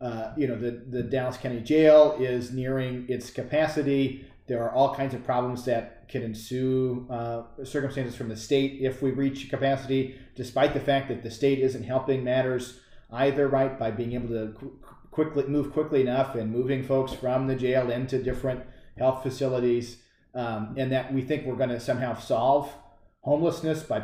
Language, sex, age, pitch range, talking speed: English, male, 40-59, 125-140 Hz, 175 wpm